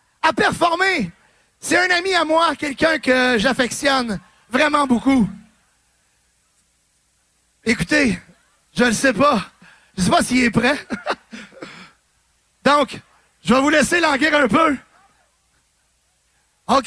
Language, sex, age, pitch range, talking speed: French, male, 30-49, 250-345 Hz, 115 wpm